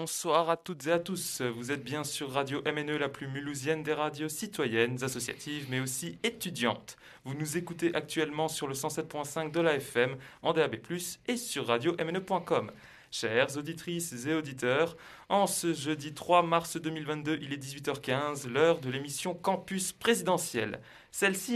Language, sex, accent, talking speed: French, male, French, 155 wpm